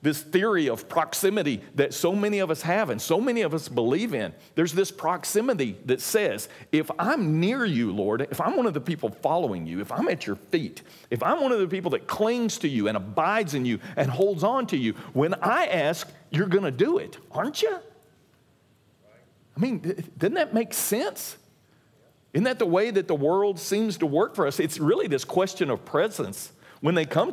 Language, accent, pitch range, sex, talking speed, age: English, American, 120-195 Hz, male, 210 wpm, 50-69